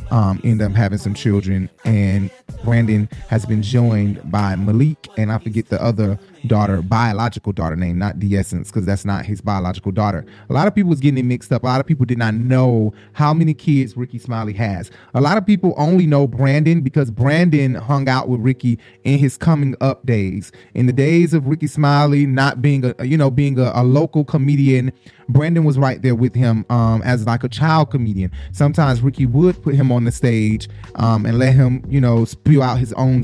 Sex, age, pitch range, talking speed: male, 20-39, 115-140 Hz, 210 wpm